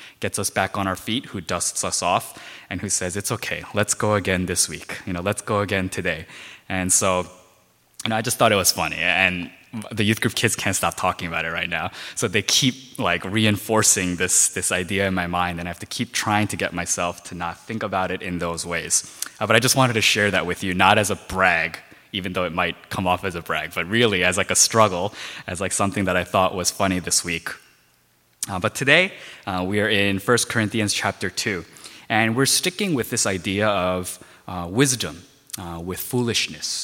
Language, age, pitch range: Korean, 20-39, 90-105 Hz